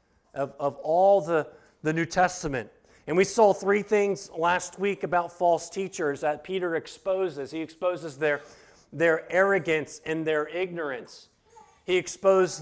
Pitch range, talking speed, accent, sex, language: 145-190 Hz, 145 wpm, American, male, English